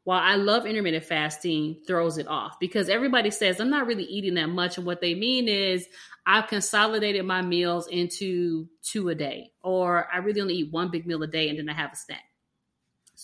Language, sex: English, female